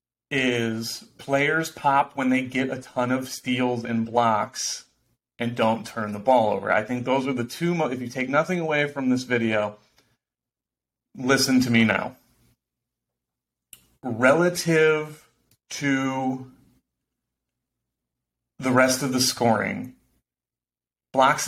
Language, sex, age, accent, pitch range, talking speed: English, male, 30-49, American, 115-130 Hz, 125 wpm